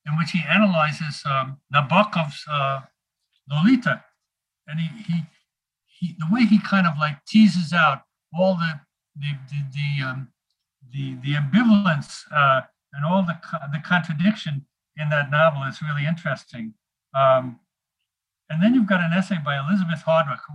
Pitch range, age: 140-180 Hz, 60-79